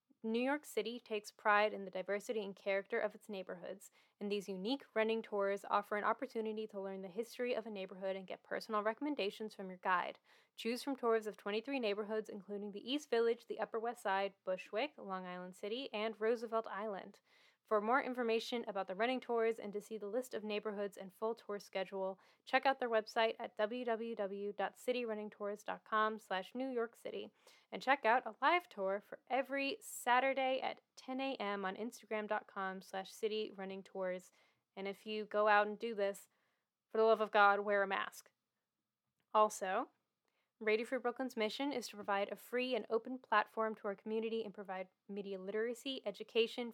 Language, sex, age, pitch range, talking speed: English, female, 10-29, 200-230 Hz, 175 wpm